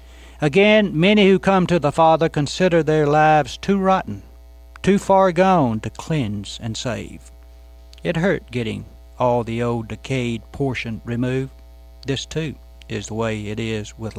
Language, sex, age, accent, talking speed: English, male, 60-79, American, 150 wpm